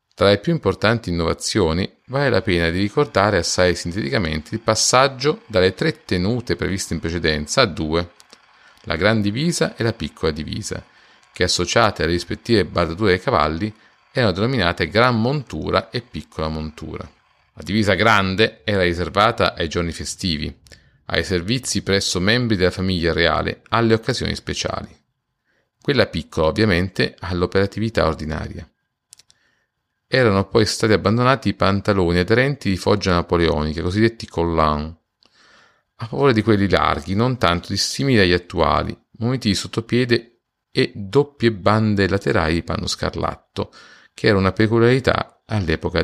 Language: Italian